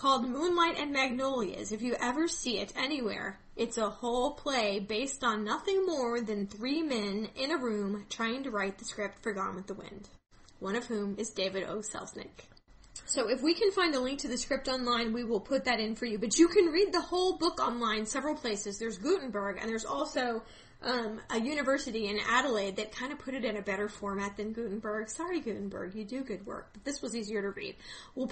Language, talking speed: English, 220 wpm